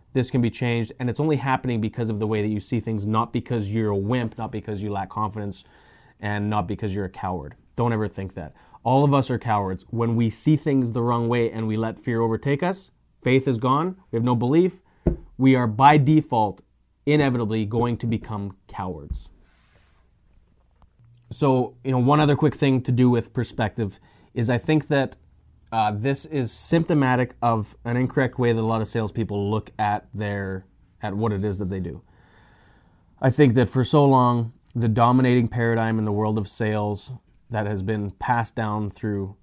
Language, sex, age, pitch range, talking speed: English, male, 30-49, 100-125 Hz, 195 wpm